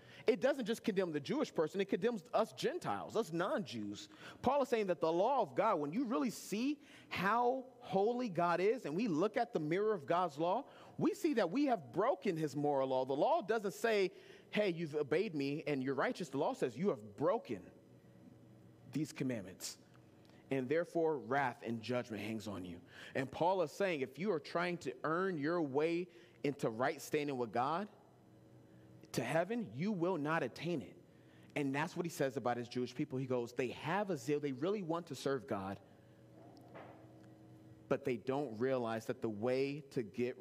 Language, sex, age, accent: English, male, 30-49, American